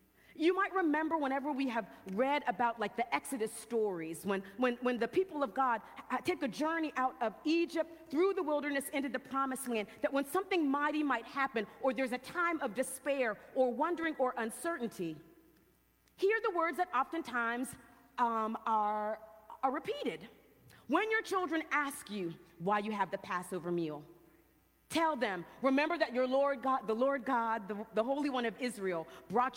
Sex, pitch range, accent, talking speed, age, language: female, 215-290 Hz, American, 175 wpm, 40-59, English